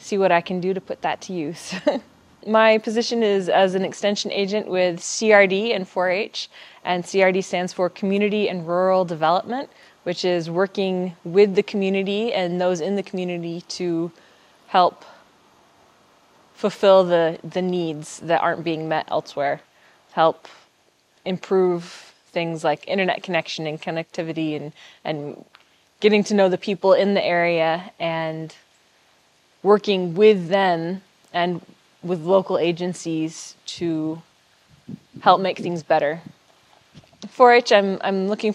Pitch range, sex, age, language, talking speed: 165-195 Hz, female, 20-39, English, 135 wpm